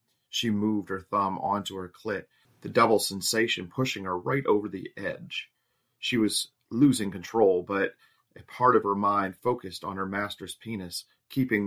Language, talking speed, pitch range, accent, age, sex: English, 165 wpm, 95-115 Hz, American, 40-59, male